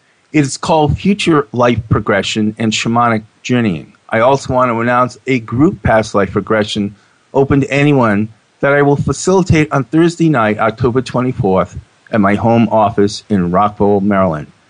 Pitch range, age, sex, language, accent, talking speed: 110-150 Hz, 40-59, male, English, American, 155 wpm